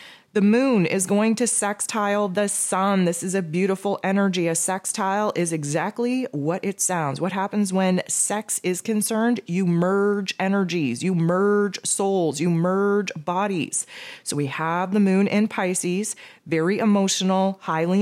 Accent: American